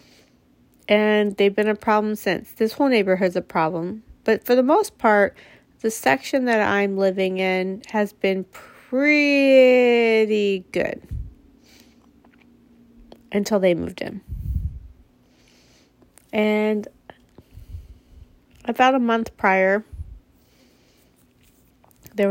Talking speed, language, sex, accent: 95 wpm, English, female, American